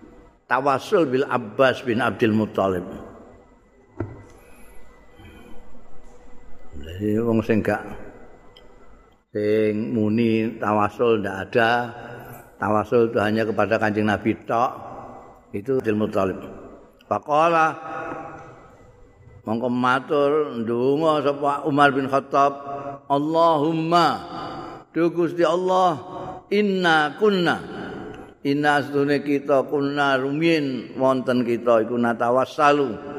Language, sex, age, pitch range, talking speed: Indonesian, male, 50-69, 110-150 Hz, 80 wpm